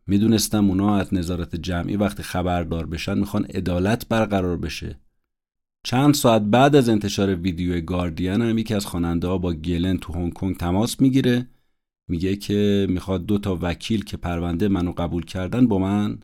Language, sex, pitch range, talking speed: Persian, male, 90-105 Hz, 155 wpm